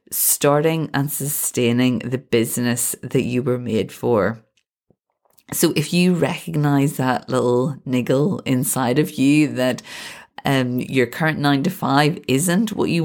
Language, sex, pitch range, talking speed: English, female, 125-165 Hz, 140 wpm